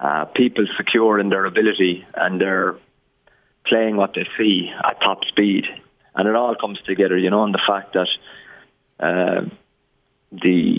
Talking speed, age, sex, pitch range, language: 155 wpm, 20-39, male, 95-105 Hz, English